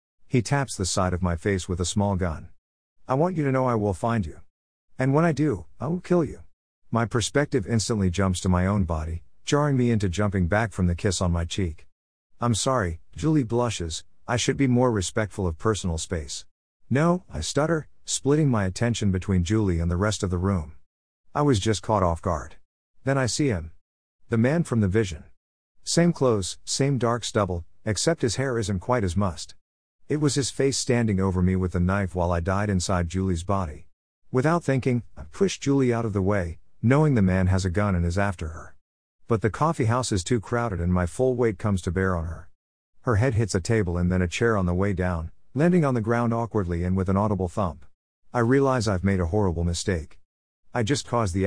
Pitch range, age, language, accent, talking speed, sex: 85-120 Hz, 50-69, English, American, 215 wpm, male